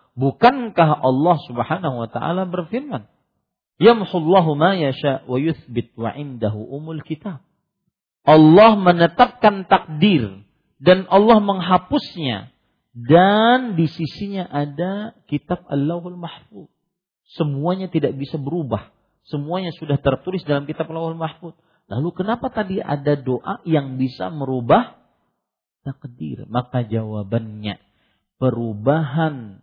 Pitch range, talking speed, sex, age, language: 125-185 Hz, 105 wpm, male, 40-59, Malay